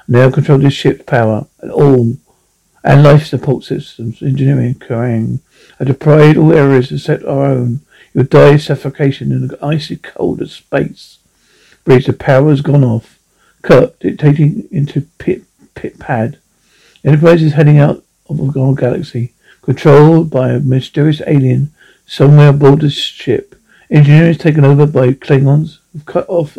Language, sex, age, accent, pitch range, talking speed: English, male, 50-69, British, 135-155 Hz, 155 wpm